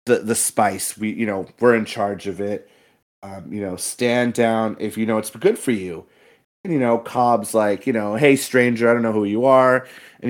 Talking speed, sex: 225 wpm, male